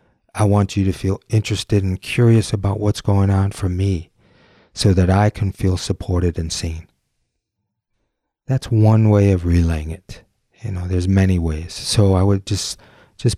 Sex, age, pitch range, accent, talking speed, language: male, 40-59, 90-100 Hz, American, 170 wpm, English